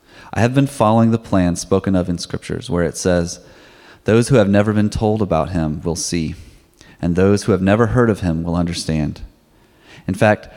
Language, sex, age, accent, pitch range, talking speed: English, male, 30-49, American, 85-110 Hz, 200 wpm